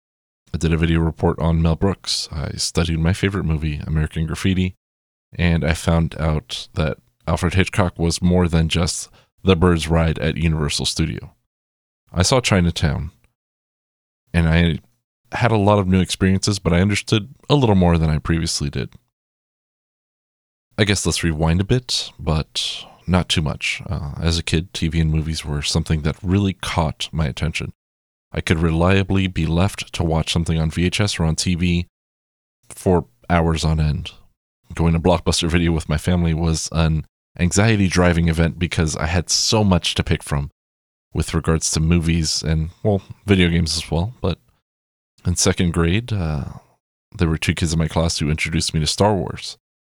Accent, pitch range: American, 80-95 Hz